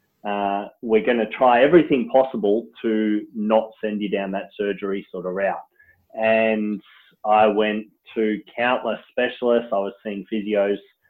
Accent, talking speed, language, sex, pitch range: Australian, 145 wpm, English, male, 100-120 Hz